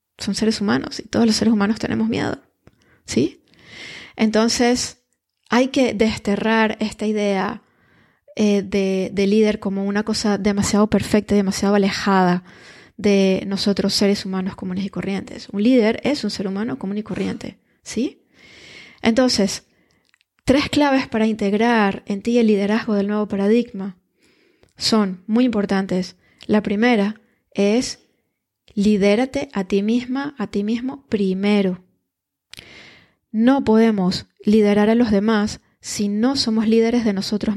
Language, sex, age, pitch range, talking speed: Spanish, female, 20-39, 200-230 Hz, 135 wpm